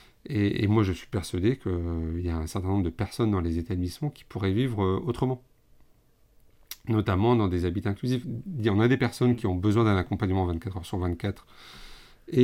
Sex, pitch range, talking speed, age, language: male, 95-120 Hz, 200 wpm, 40-59, French